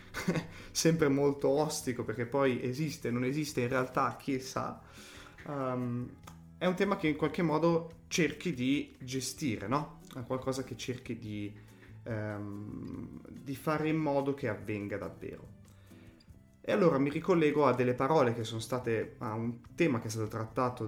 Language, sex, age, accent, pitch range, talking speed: Italian, male, 20-39, native, 110-150 Hz, 155 wpm